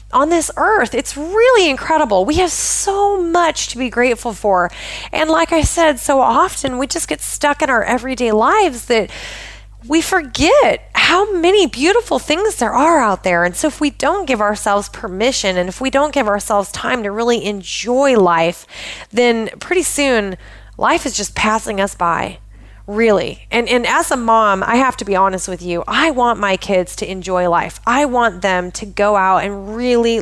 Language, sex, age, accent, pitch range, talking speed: English, female, 30-49, American, 200-265 Hz, 190 wpm